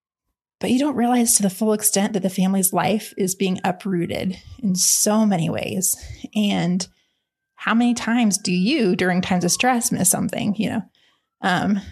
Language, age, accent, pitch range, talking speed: English, 20-39, American, 190-235 Hz, 170 wpm